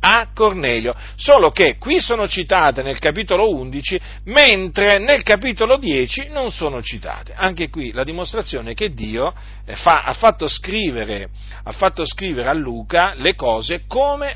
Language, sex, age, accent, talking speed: Italian, male, 40-59, native, 140 wpm